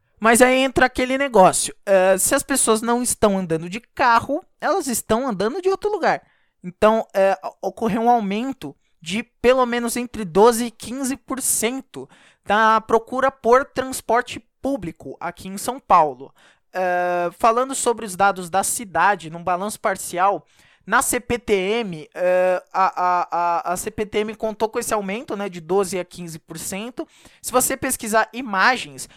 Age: 20-39